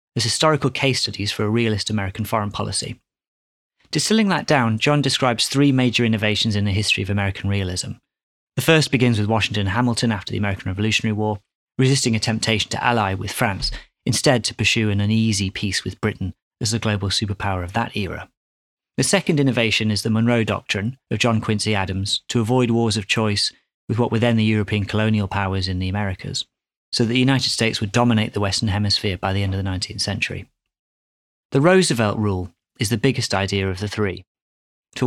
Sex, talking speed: male, 195 wpm